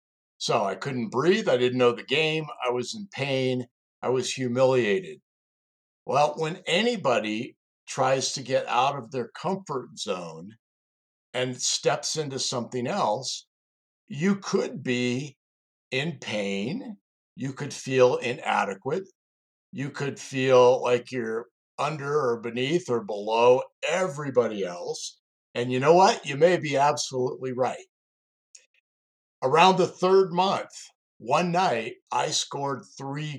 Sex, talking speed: male, 130 wpm